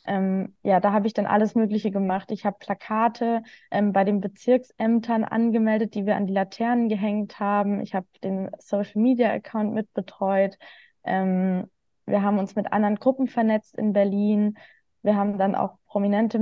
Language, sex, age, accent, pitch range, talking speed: German, female, 20-39, German, 195-225 Hz, 155 wpm